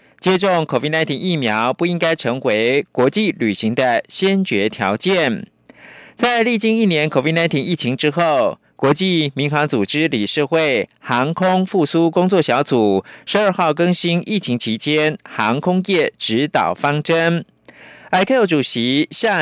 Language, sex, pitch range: Chinese, male, 135-180 Hz